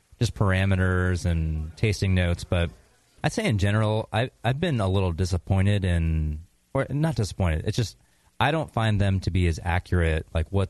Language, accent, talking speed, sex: English, American, 180 wpm, male